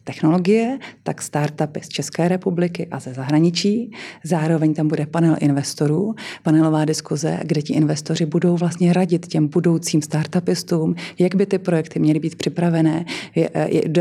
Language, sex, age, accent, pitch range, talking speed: Czech, female, 30-49, native, 155-175 Hz, 140 wpm